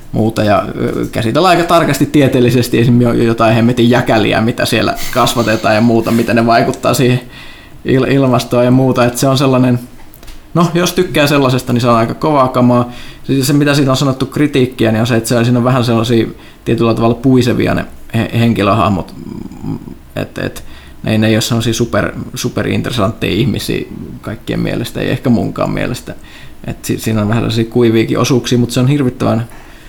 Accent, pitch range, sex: native, 115-130 Hz, male